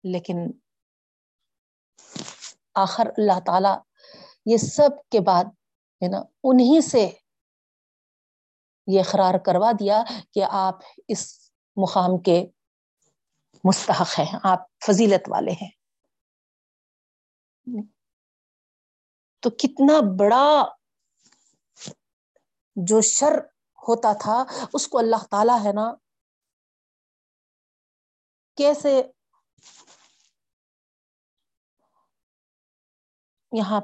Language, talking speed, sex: Urdu, 70 wpm, female